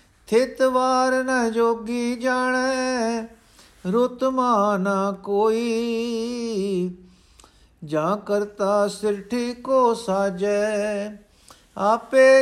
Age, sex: 50-69, male